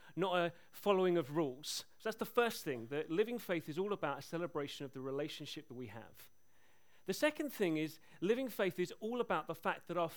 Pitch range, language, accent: 160-210 Hz, English, British